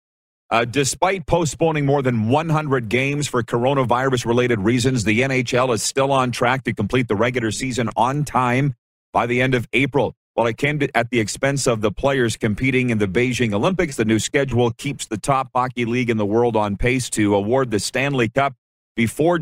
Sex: male